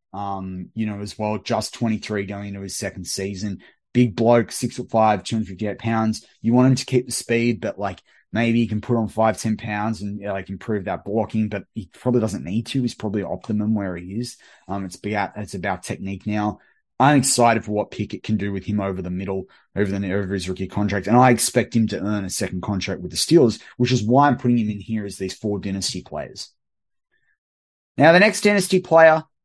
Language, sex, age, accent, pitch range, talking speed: English, male, 30-49, Australian, 100-120 Hz, 235 wpm